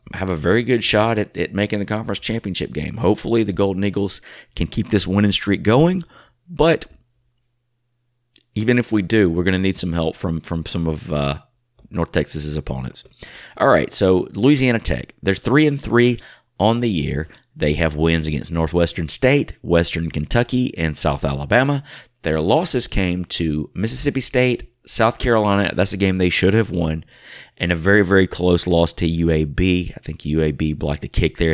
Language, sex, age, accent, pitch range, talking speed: English, male, 30-49, American, 80-115 Hz, 180 wpm